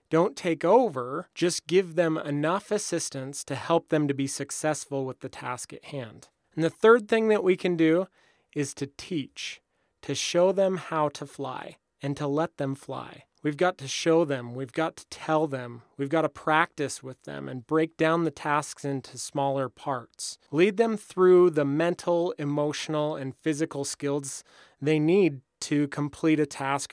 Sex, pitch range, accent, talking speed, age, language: male, 140-175 Hz, American, 180 wpm, 30-49, English